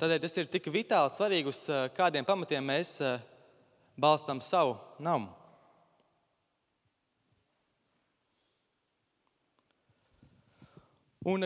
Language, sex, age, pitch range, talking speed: English, male, 20-39, 130-170 Hz, 70 wpm